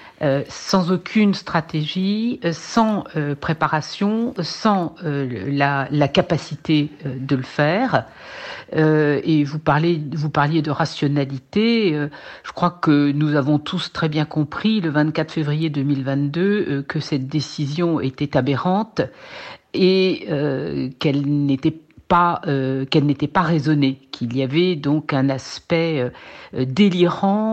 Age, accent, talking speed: 60-79, French, 135 wpm